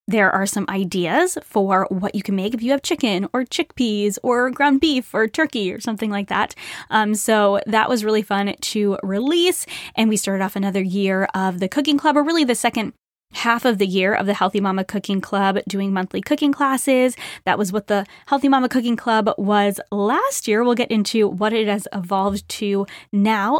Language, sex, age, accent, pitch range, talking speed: English, female, 10-29, American, 200-255 Hz, 205 wpm